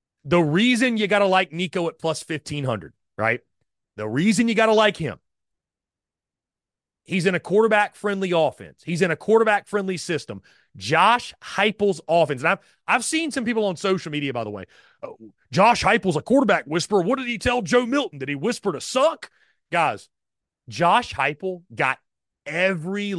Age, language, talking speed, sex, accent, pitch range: 30-49, English, 165 wpm, male, American, 150-220 Hz